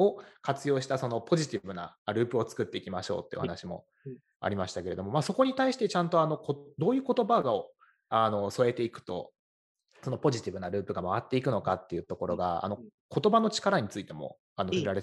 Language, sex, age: Japanese, male, 20-39